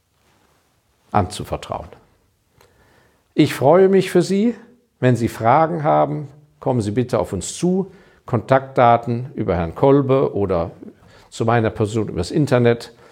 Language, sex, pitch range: German, male, 95-135 Hz